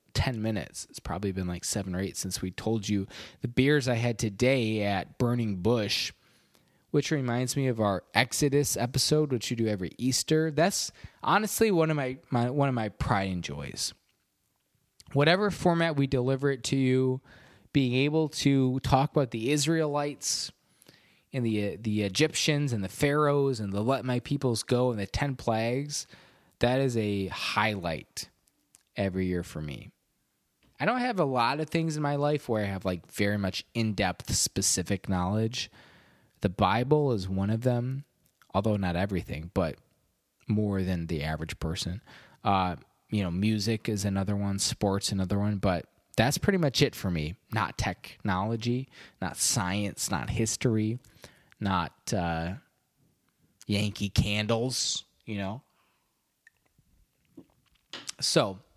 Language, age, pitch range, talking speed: English, 20-39, 100-135 Hz, 150 wpm